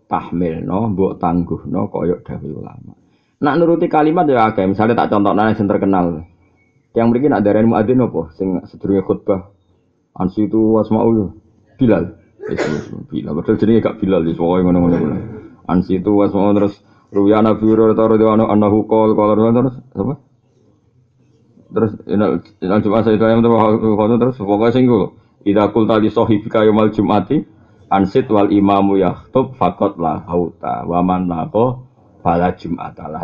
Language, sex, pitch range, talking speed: Indonesian, male, 95-115 Hz, 80 wpm